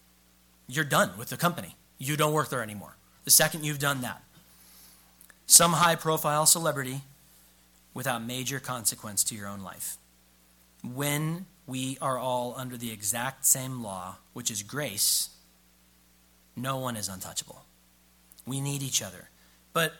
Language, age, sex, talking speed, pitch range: English, 30-49, male, 140 wpm, 105-155 Hz